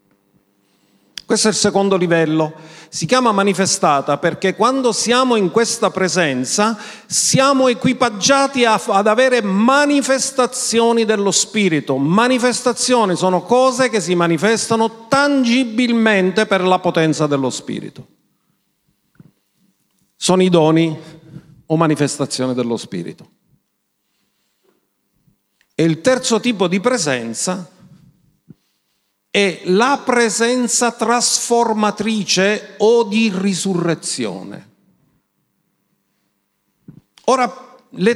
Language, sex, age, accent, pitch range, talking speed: Italian, male, 40-59, native, 160-230 Hz, 90 wpm